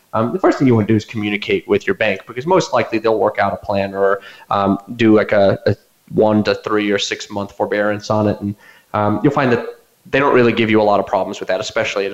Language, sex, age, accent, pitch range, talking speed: English, male, 30-49, American, 105-130 Hz, 265 wpm